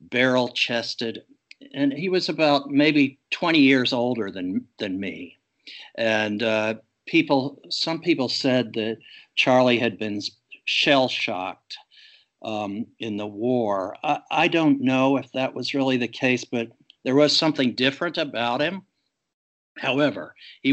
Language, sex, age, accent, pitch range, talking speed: English, male, 60-79, American, 110-140 Hz, 135 wpm